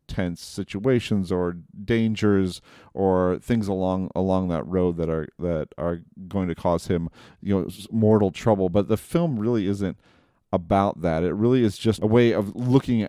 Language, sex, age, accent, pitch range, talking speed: English, male, 40-59, American, 90-110 Hz, 170 wpm